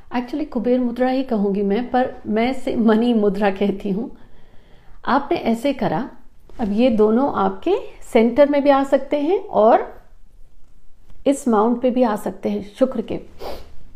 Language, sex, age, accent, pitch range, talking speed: Hindi, female, 50-69, native, 205-260 Hz, 150 wpm